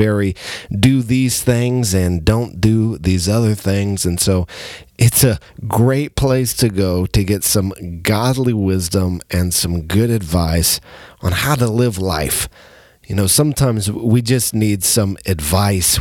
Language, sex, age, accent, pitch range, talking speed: English, male, 40-59, American, 90-120 Hz, 150 wpm